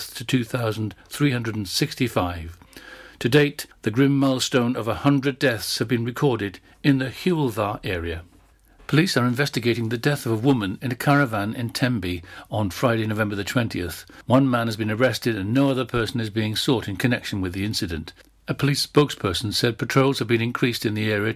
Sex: male